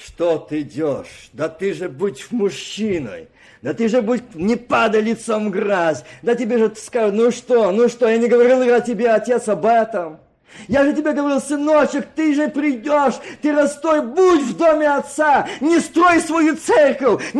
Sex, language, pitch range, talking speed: male, Russian, 285-370 Hz, 170 wpm